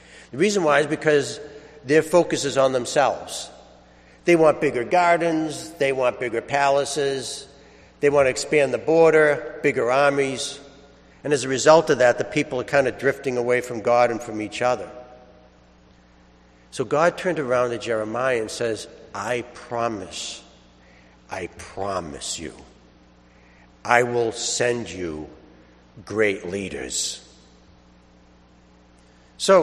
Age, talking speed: 60-79, 130 wpm